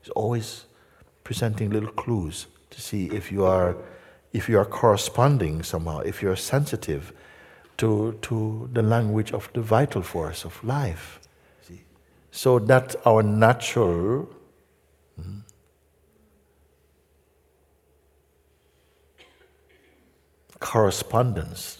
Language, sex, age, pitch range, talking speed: English, male, 60-79, 80-110 Hz, 100 wpm